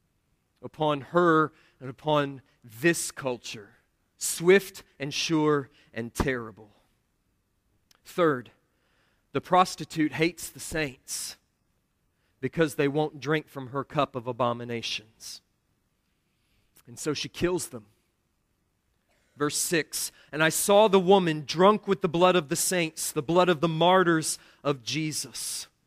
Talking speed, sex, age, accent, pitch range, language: 120 wpm, male, 40-59, American, 135-195 Hz, English